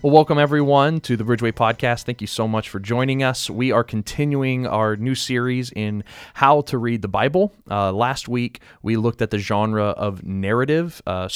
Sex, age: male, 30-49